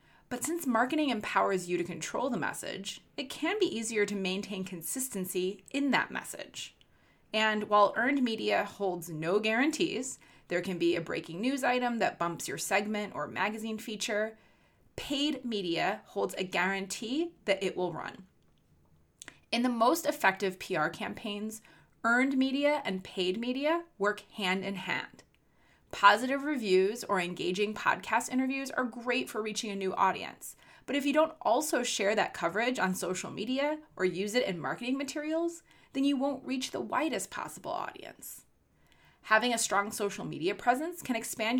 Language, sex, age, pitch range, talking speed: English, female, 20-39, 195-265 Hz, 160 wpm